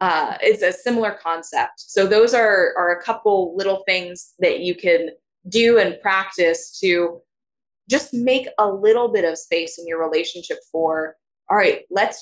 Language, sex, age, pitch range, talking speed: English, female, 20-39, 165-215 Hz, 165 wpm